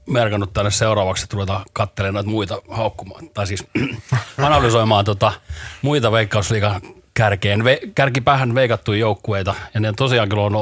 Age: 40-59